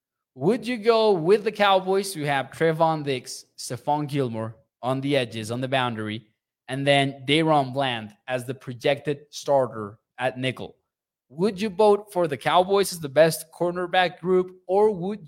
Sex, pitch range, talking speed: male, 135-170 Hz, 160 wpm